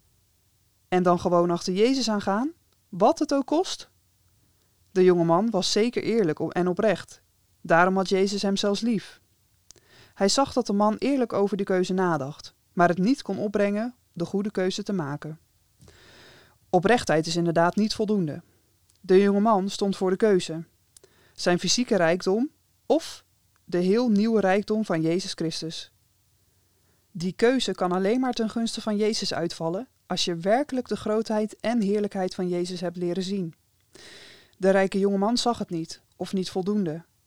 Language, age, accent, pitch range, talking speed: Dutch, 20-39, Dutch, 165-210 Hz, 160 wpm